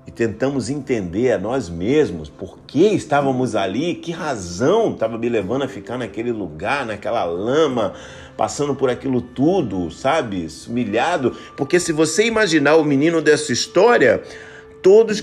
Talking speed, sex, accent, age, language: 140 wpm, male, Brazilian, 50-69, Portuguese